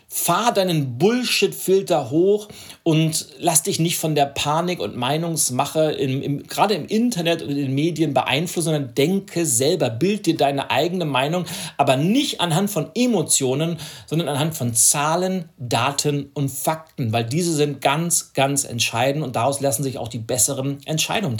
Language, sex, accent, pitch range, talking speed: German, male, German, 135-170 Hz, 155 wpm